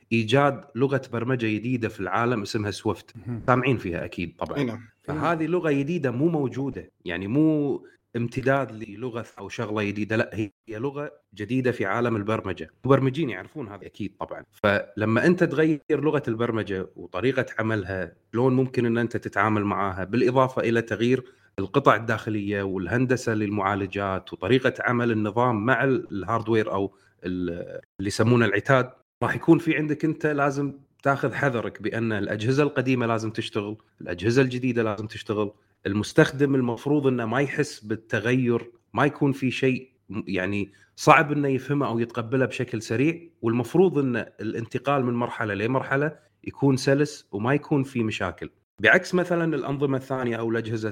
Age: 30-49